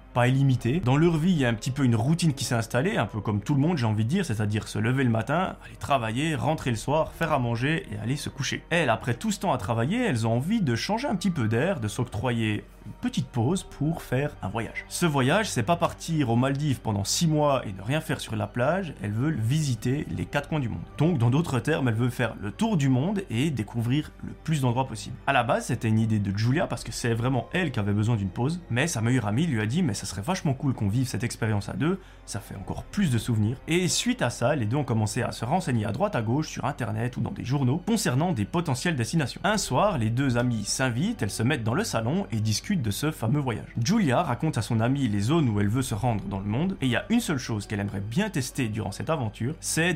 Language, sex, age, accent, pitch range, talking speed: French, male, 20-39, French, 110-155 Hz, 270 wpm